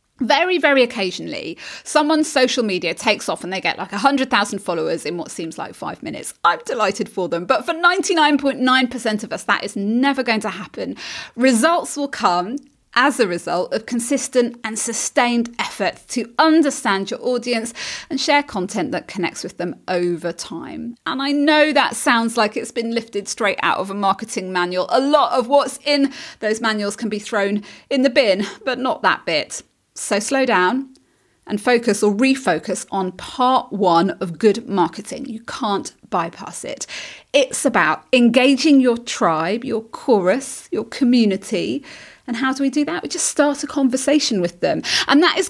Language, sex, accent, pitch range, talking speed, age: English, female, British, 205-280 Hz, 175 wpm, 30-49